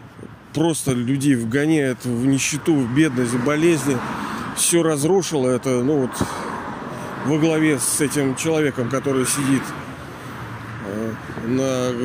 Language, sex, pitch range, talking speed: Russian, male, 125-155 Hz, 110 wpm